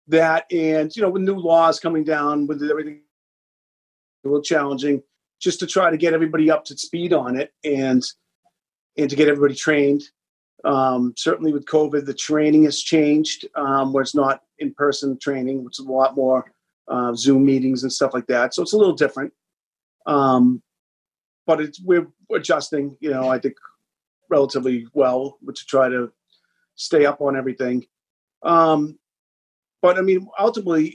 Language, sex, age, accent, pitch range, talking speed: English, male, 40-59, American, 135-170 Hz, 165 wpm